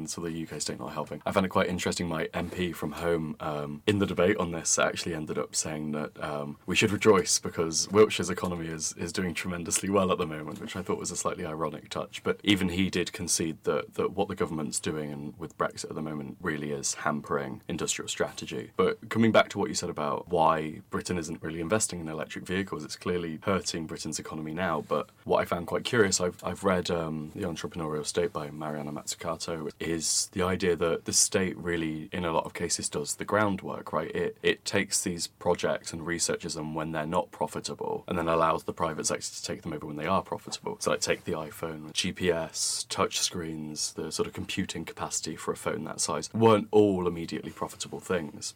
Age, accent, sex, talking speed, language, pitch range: 20-39, British, male, 215 wpm, English, 75-90 Hz